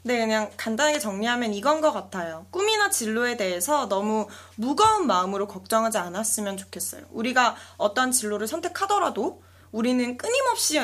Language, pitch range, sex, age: Korean, 195-300 Hz, female, 20-39